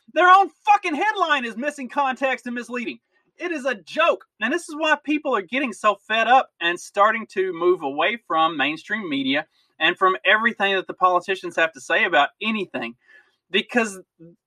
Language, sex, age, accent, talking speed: English, male, 30-49, American, 180 wpm